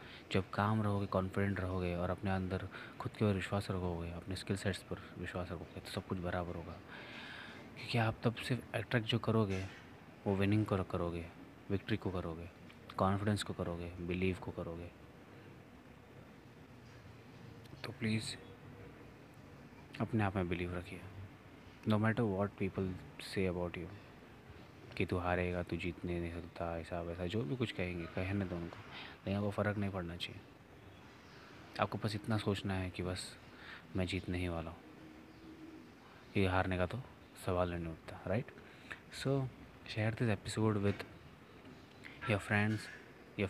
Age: 30-49